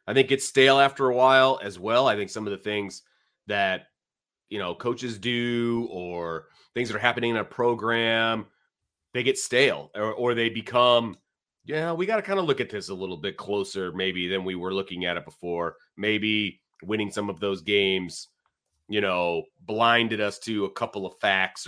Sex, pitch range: male, 100-130 Hz